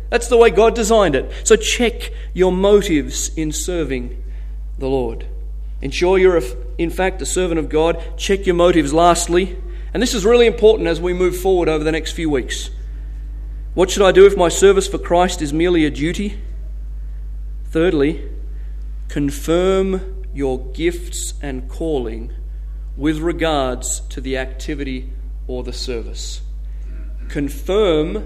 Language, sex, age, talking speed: English, male, 40-59, 145 wpm